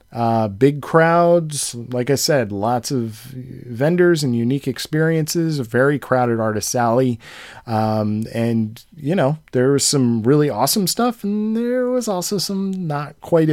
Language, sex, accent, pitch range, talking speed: English, male, American, 120-150 Hz, 150 wpm